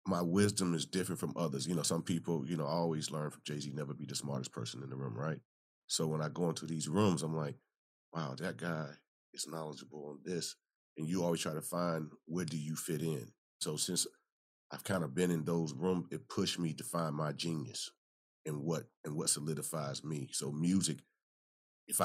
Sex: male